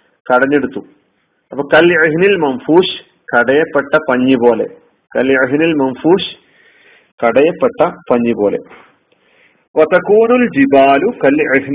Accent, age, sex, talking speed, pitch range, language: native, 40-59, male, 55 wpm, 125-160 Hz, Malayalam